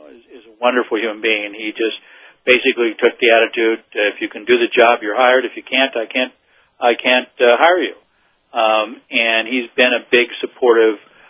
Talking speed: 195 wpm